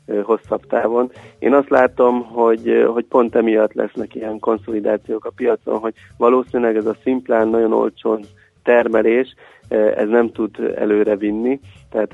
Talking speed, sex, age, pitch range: 135 wpm, male, 30-49, 105-120 Hz